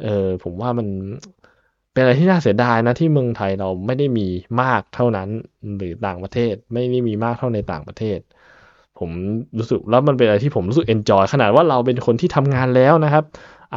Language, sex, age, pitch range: Thai, male, 20-39, 95-135 Hz